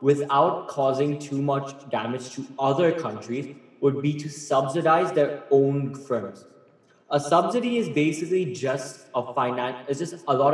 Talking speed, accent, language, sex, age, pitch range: 150 wpm, Indian, English, male, 10-29, 120-145 Hz